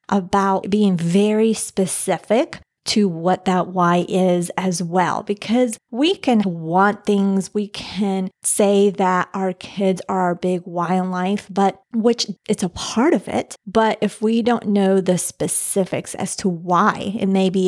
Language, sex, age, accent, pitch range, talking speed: English, female, 30-49, American, 185-210 Hz, 155 wpm